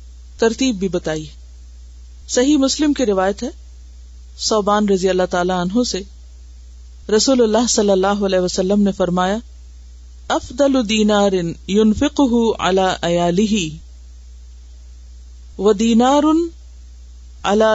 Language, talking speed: Urdu, 100 wpm